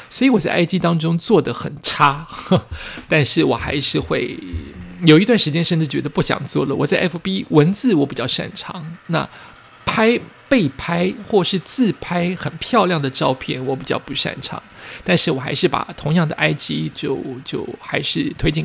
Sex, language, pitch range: male, Chinese, 150-200 Hz